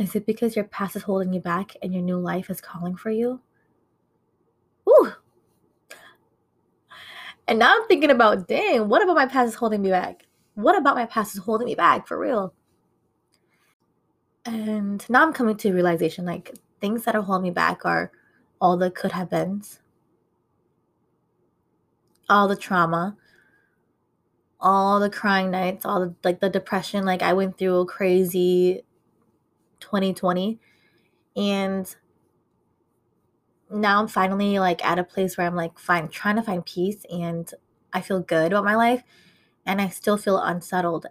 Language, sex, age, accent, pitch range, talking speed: English, female, 20-39, American, 180-210 Hz, 155 wpm